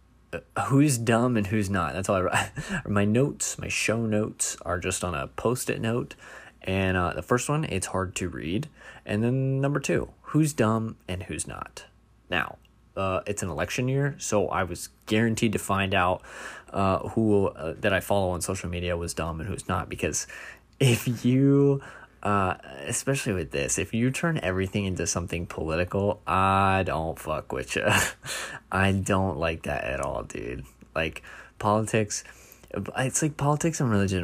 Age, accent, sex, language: 20-39, American, male, English